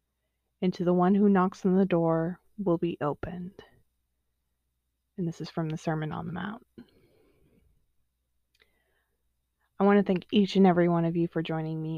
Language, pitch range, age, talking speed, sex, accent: English, 160-205 Hz, 20-39, 170 wpm, female, American